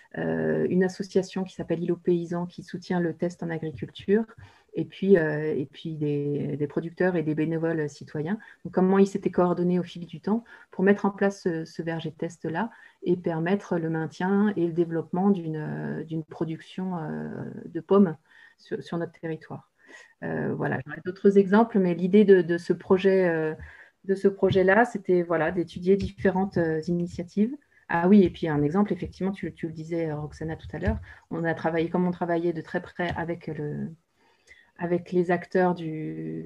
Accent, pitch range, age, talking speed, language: French, 160-195 Hz, 30-49, 190 wpm, French